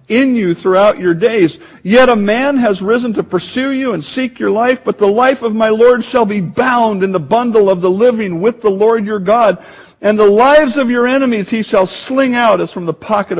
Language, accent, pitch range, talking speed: English, American, 170-235 Hz, 230 wpm